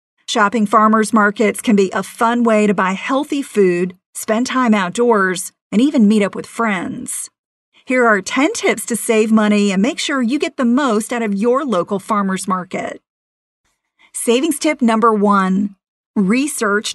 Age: 40-59